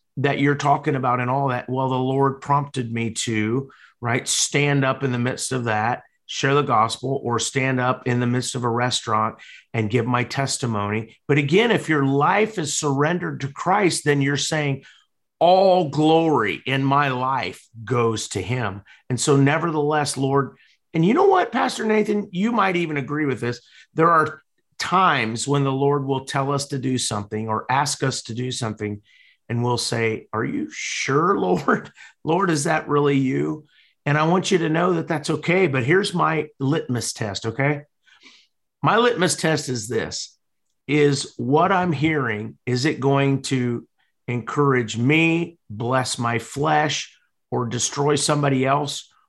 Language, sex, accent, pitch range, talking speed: English, male, American, 125-150 Hz, 170 wpm